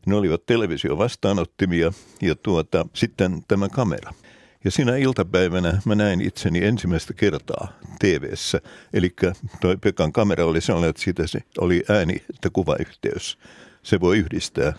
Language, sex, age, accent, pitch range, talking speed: Finnish, male, 60-79, native, 85-105 Hz, 135 wpm